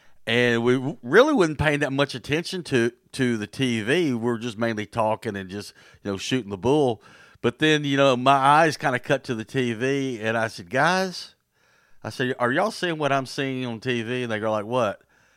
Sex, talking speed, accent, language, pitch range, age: male, 215 wpm, American, English, 105-130 Hz, 50-69